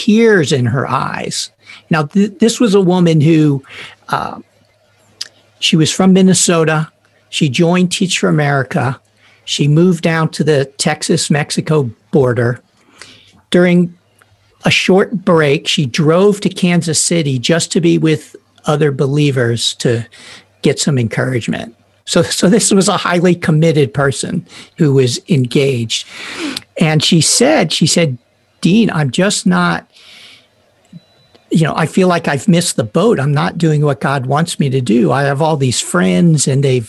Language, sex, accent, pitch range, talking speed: English, male, American, 135-175 Hz, 150 wpm